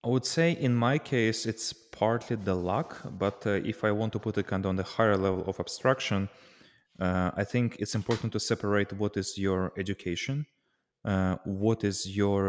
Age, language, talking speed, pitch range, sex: 20-39, English, 195 wpm, 90-105 Hz, male